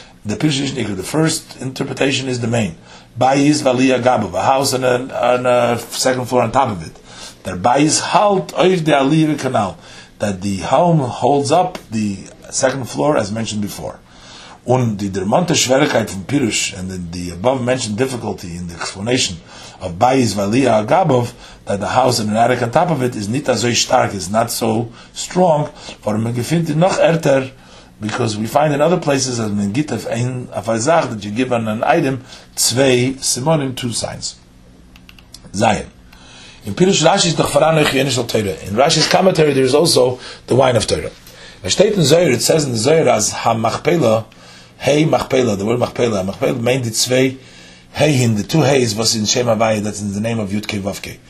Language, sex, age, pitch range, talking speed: English, male, 50-69, 100-135 Hz, 170 wpm